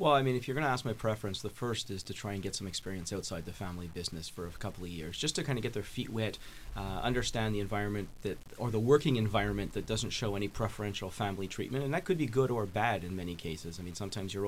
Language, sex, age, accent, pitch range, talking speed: English, male, 30-49, American, 100-115 Hz, 275 wpm